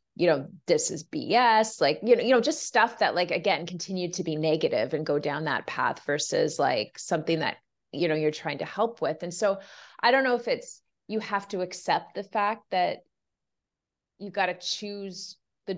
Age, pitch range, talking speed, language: 30-49, 160-200 Hz, 205 wpm, English